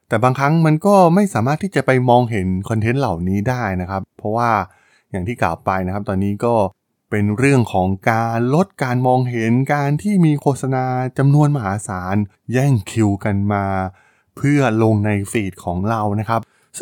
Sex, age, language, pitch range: male, 20-39, Thai, 100-135 Hz